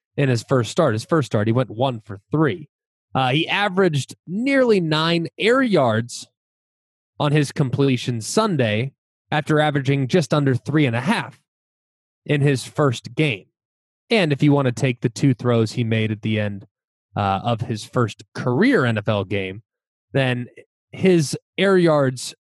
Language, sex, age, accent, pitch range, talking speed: English, male, 20-39, American, 120-175 Hz, 160 wpm